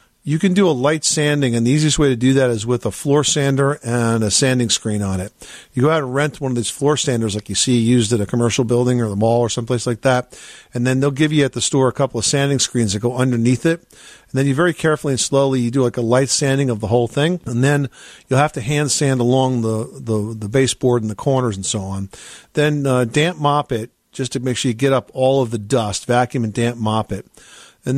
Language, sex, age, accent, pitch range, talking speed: English, male, 50-69, American, 115-140 Hz, 265 wpm